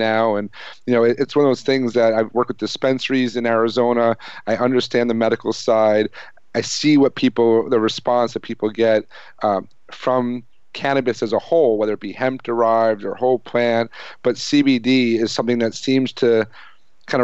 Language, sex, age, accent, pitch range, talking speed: English, male, 40-59, American, 110-125 Hz, 185 wpm